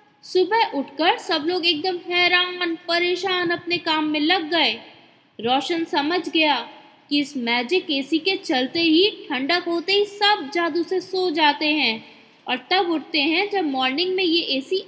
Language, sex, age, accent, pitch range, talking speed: Hindi, female, 20-39, native, 285-390 Hz, 160 wpm